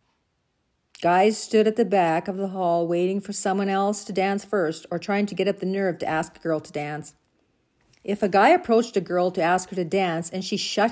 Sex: female